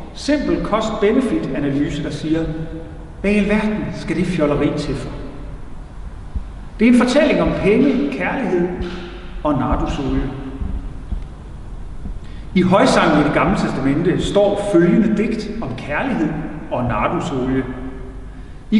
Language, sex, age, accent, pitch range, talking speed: Danish, male, 40-59, native, 135-210 Hz, 110 wpm